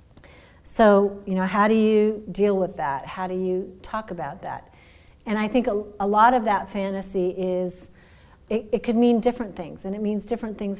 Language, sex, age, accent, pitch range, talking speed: English, female, 40-59, American, 185-230 Hz, 200 wpm